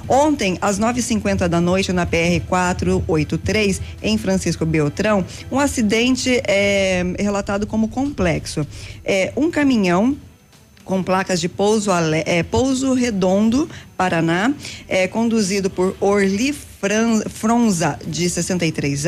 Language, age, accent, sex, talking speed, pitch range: Portuguese, 20-39, Brazilian, female, 115 wpm, 175-225 Hz